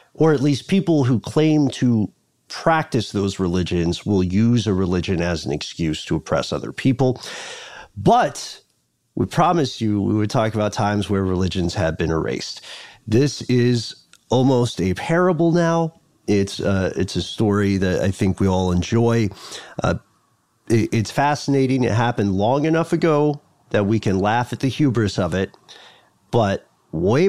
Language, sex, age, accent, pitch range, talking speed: English, male, 40-59, American, 100-140 Hz, 155 wpm